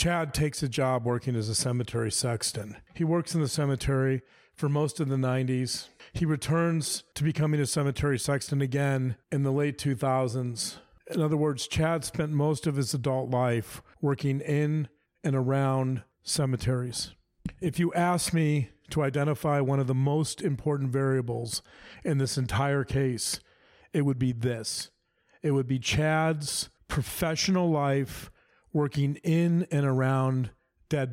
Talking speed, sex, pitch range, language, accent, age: 150 wpm, male, 130-155 Hz, English, American, 40-59